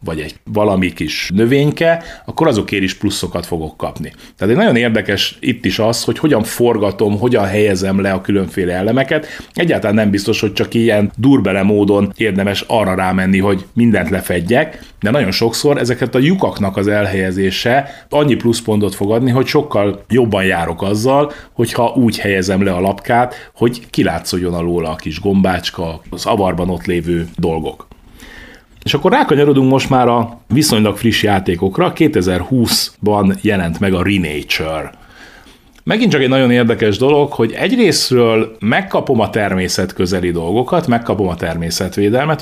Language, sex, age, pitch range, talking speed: Hungarian, male, 30-49, 90-120 Hz, 145 wpm